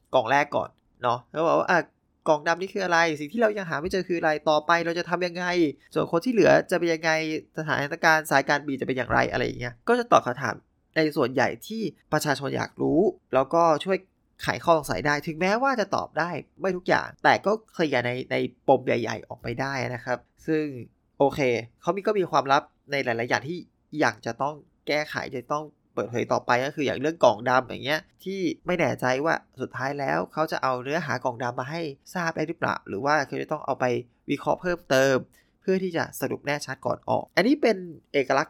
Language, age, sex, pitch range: Thai, 20-39, male, 130-175 Hz